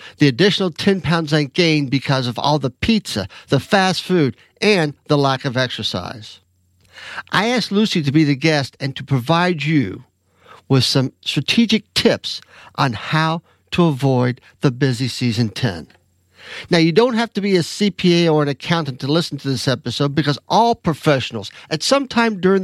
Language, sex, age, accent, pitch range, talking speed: English, male, 50-69, American, 120-160 Hz, 170 wpm